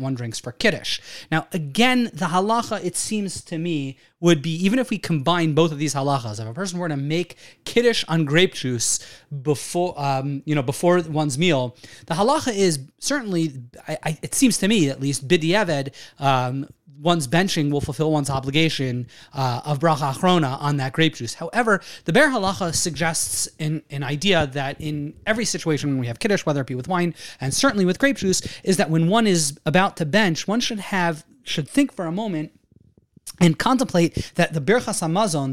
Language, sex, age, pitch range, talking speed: English, male, 30-49, 145-190 Hz, 195 wpm